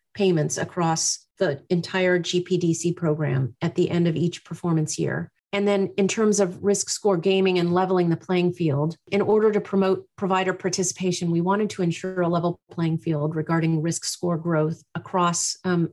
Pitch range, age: 170-190 Hz, 30-49